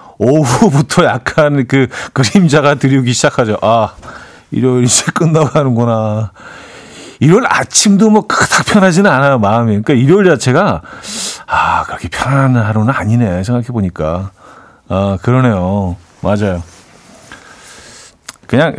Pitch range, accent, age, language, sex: 100-140 Hz, native, 40-59, Korean, male